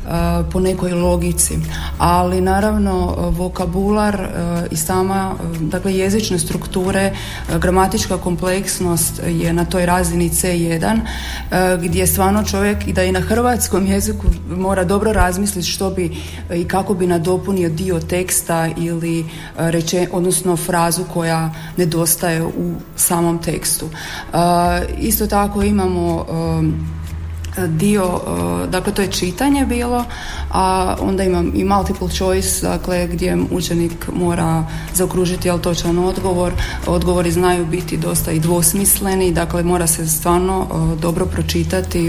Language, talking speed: Croatian, 120 wpm